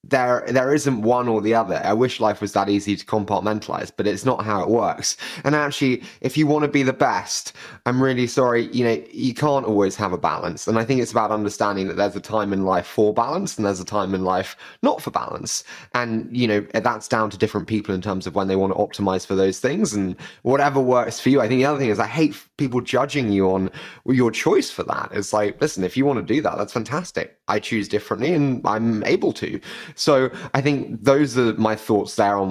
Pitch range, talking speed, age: 105-140 Hz, 235 wpm, 20-39